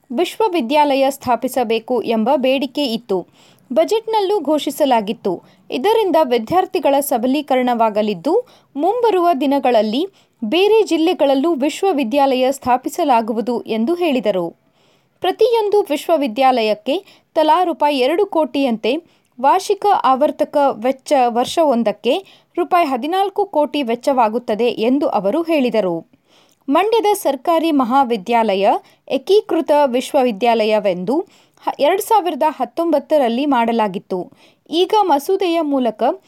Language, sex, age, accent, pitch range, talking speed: Kannada, female, 20-39, native, 240-335 Hz, 80 wpm